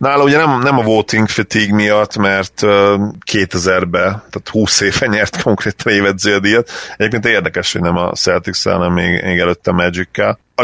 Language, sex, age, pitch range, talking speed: Hungarian, male, 30-49, 90-105 Hz, 150 wpm